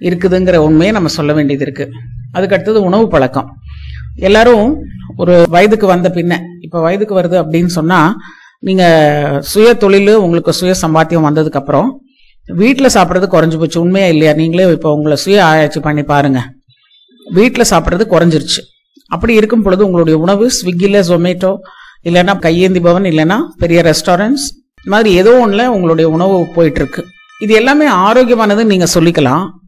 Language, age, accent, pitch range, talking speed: Tamil, 50-69, native, 160-210 Hz, 135 wpm